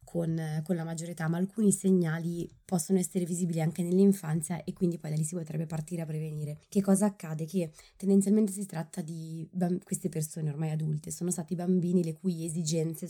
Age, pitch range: 20-39, 160-190 Hz